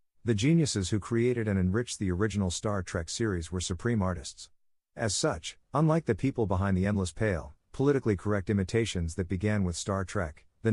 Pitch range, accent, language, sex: 90-115 Hz, American, English, male